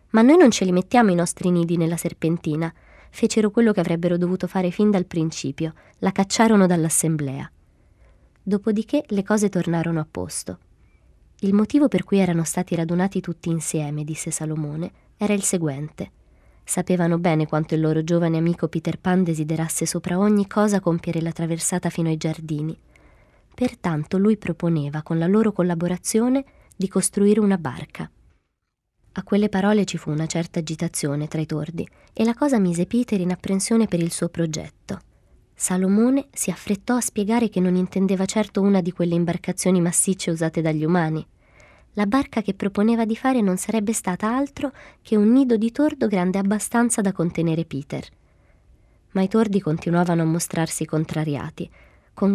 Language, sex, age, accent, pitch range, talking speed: Italian, female, 20-39, native, 160-205 Hz, 160 wpm